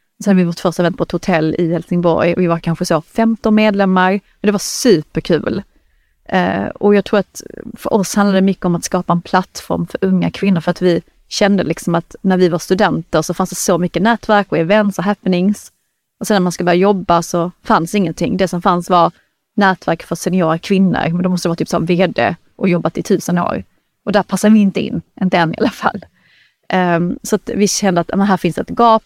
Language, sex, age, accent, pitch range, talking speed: Swedish, female, 30-49, native, 175-205 Hz, 225 wpm